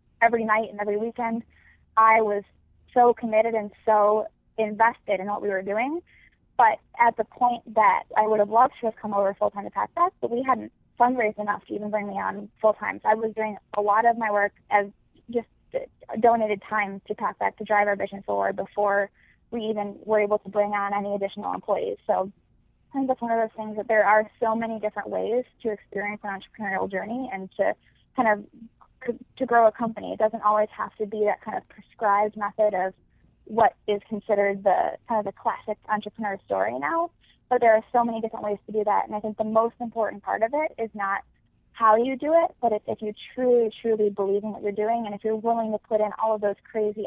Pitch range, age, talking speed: 205-230 Hz, 20-39, 220 wpm